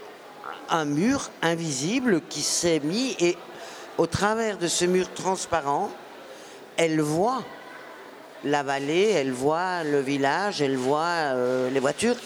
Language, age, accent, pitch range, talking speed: French, 50-69, French, 165-210 Hz, 120 wpm